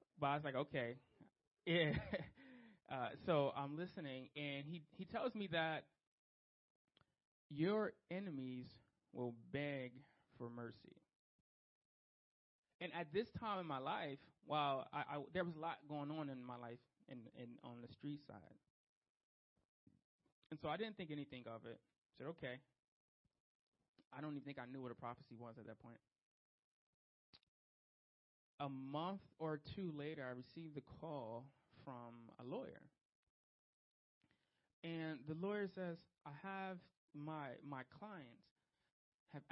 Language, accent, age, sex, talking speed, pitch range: English, American, 20-39, male, 140 wpm, 125-160 Hz